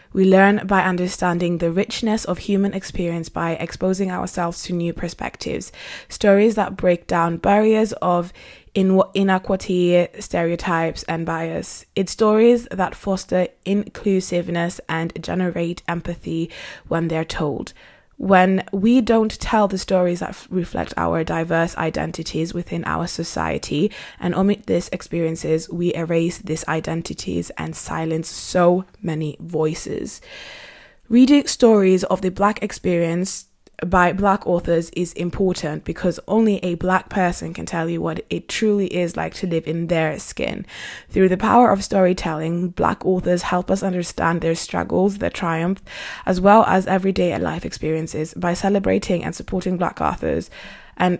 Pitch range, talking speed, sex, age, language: 170-195 Hz, 140 wpm, female, 20-39, English